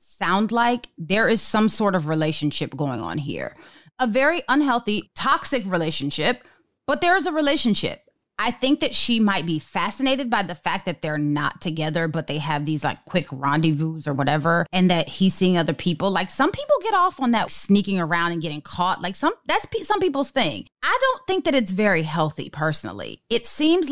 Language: English